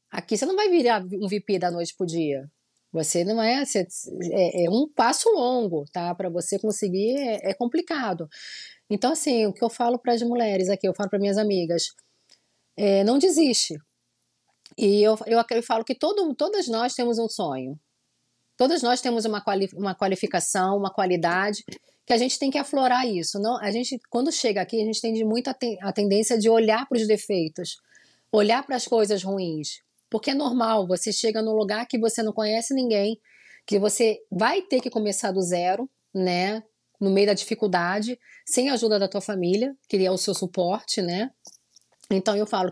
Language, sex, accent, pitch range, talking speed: Portuguese, female, Brazilian, 195-240 Hz, 190 wpm